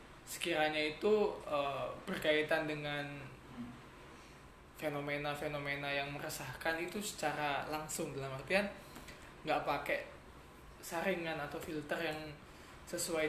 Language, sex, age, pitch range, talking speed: Indonesian, male, 20-39, 145-170 Hz, 90 wpm